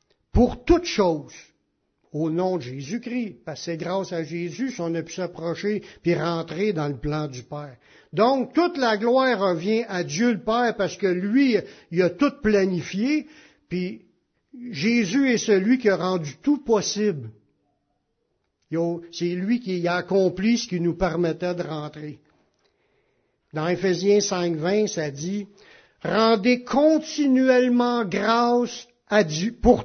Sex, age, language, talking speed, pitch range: male, 60-79, French, 145 wpm, 165-225 Hz